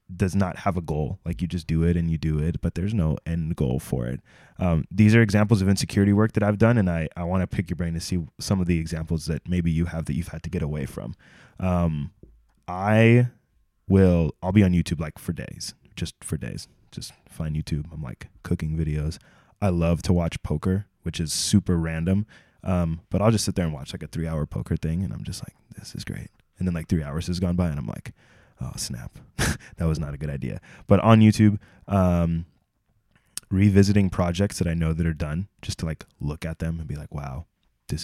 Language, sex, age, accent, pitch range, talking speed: English, male, 20-39, American, 80-100 Hz, 230 wpm